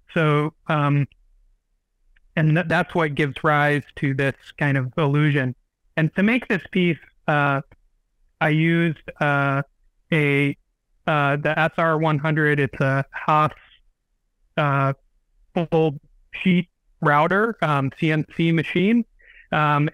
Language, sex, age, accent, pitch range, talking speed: English, male, 30-49, American, 145-170 Hz, 110 wpm